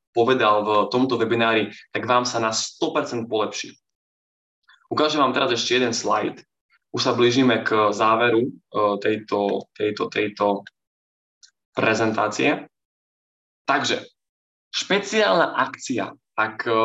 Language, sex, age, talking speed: Slovak, male, 20-39, 105 wpm